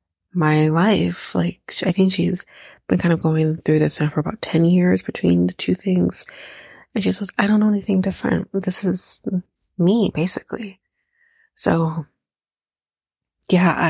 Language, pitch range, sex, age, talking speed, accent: English, 155-195 Hz, female, 30-49, 150 wpm, American